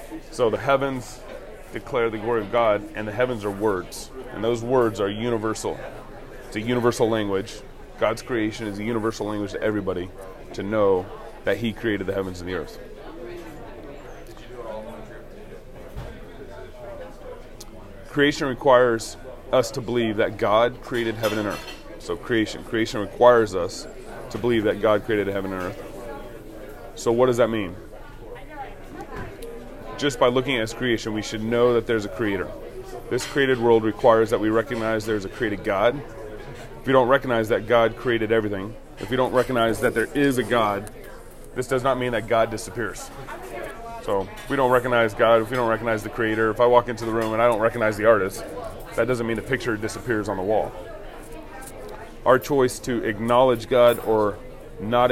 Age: 30-49